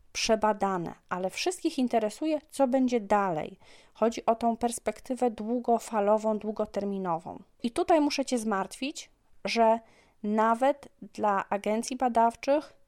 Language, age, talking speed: Polish, 30-49, 105 wpm